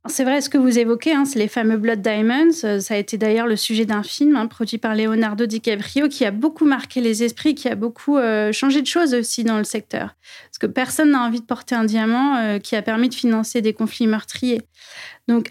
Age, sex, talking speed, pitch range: 30-49, female, 230 wpm, 225-265 Hz